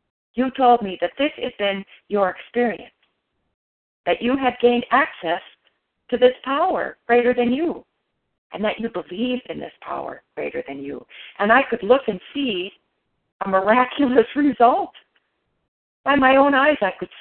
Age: 50-69